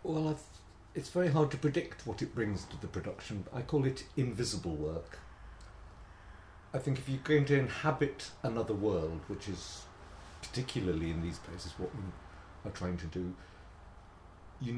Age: 50-69